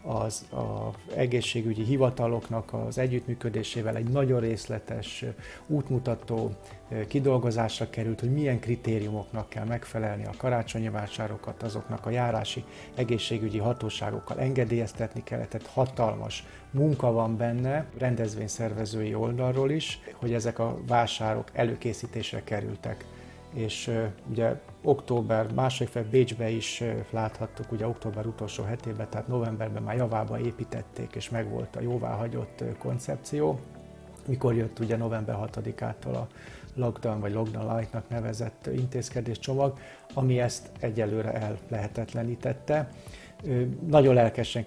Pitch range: 110-125 Hz